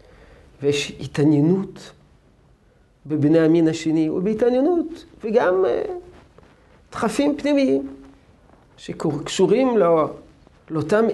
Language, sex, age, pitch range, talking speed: Hebrew, male, 50-69, 135-165 Hz, 65 wpm